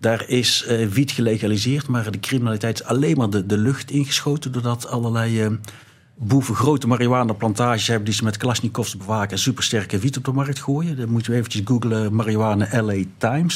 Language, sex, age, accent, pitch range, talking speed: Dutch, male, 60-79, Dutch, 115-140 Hz, 185 wpm